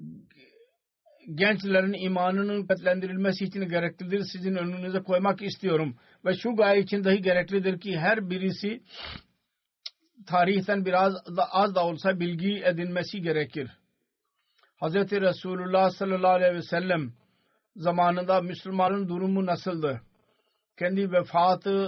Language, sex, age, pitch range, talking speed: Turkish, male, 50-69, 180-195 Hz, 105 wpm